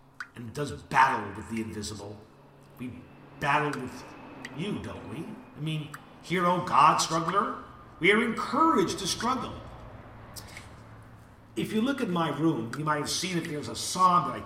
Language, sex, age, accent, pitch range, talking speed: English, male, 50-69, American, 120-180 Hz, 160 wpm